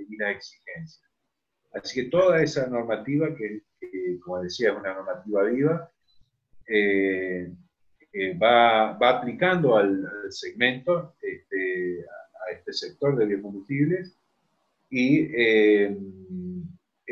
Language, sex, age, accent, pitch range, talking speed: Spanish, male, 30-49, Argentinian, 100-165 Hz, 115 wpm